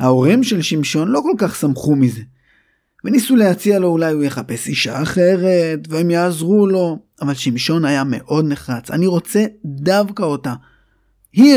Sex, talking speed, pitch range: male, 150 wpm, 140-185 Hz